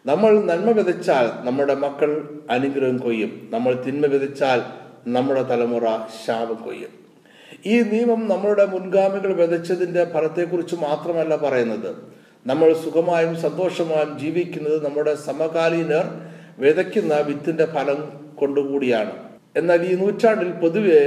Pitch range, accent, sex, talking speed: 135-180 Hz, native, male, 110 wpm